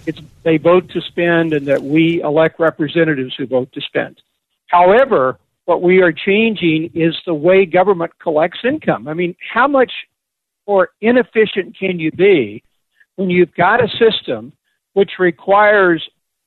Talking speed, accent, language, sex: 150 wpm, American, English, male